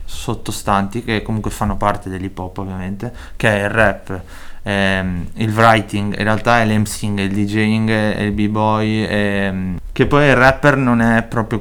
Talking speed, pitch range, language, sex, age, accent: 165 wpm, 105-120 Hz, Italian, male, 20-39, native